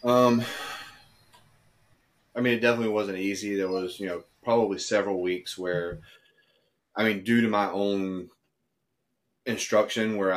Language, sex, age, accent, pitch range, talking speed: English, male, 30-49, American, 95-110 Hz, 135 wpm